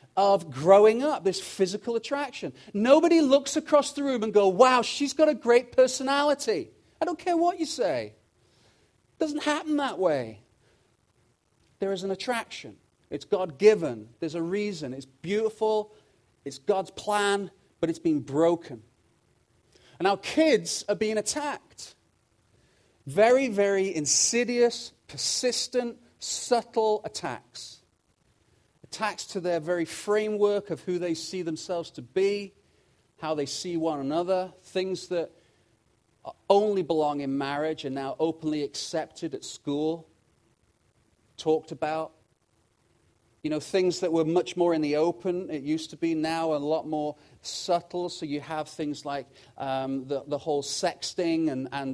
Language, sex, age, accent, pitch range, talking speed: English, male, 40-59, British, 150-205 Hz, 140 wpm